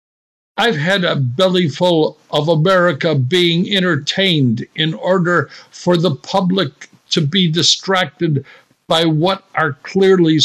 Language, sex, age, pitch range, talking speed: English, male, 60-79, 150-195 Hz, 115 wpm